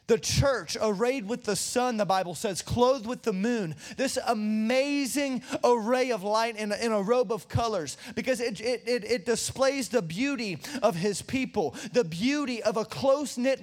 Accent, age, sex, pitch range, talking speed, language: American, 20-39, male, 220-255 Hz, 165 wpm, English